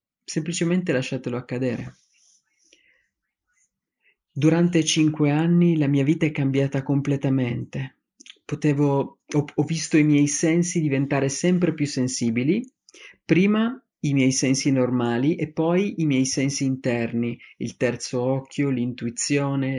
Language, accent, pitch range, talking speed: English, Italian, 135-165 Hz, 115 wpm